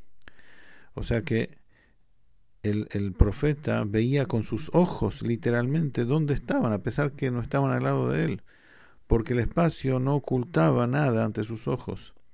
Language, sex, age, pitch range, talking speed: English, male, 50-69, 110-145 Hz, 150 wpm